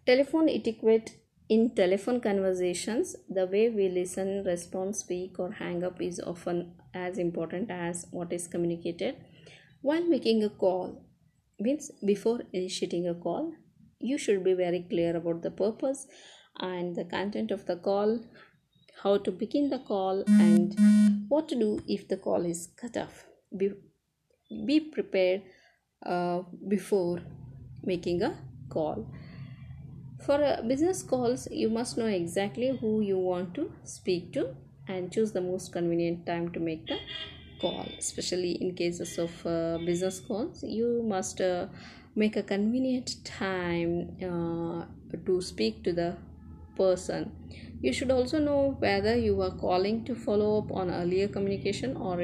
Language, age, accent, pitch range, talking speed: Kannada, 20-39, native, 175-220 Hz, 145 wpm